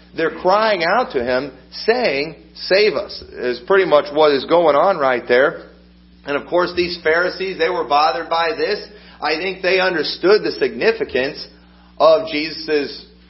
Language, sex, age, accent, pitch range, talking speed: English, male, 40-59, American, 145-190 Hz, 160 wpm